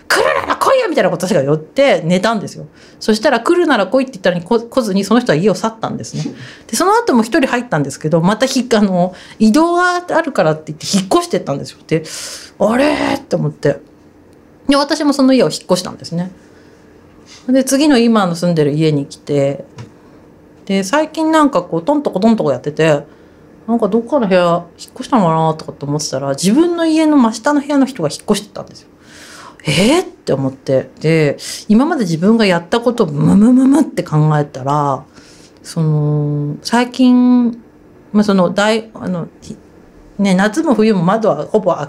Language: Japanese